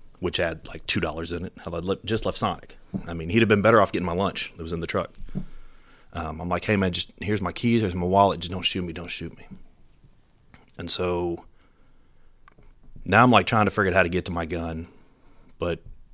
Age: 30-49